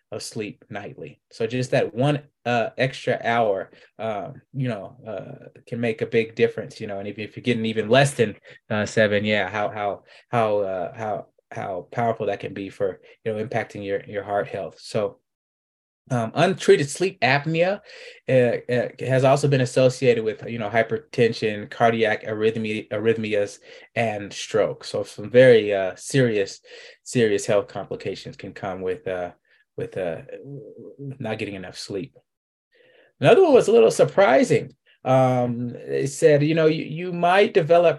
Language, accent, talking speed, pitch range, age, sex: English, American, 160 wpm, 115-170 Hz, 20-39, male